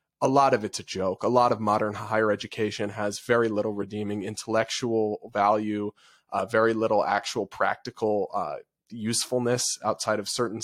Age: 20-39